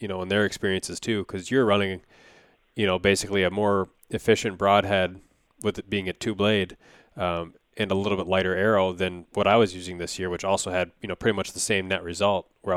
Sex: male